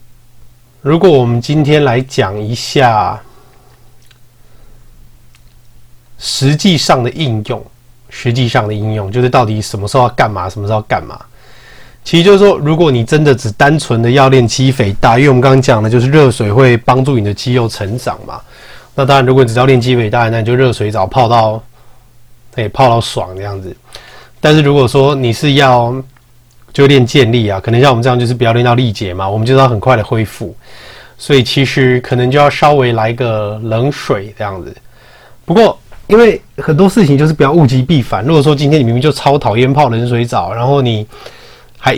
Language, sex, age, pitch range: Chinese, male, 30-49, 115-135 Hz